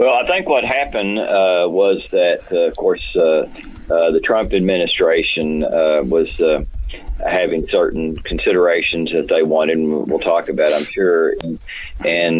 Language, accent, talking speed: English, American, 160 wpm